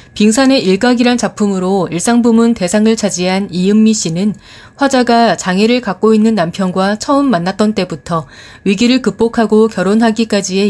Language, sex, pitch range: Korean, female, 185-240 Hz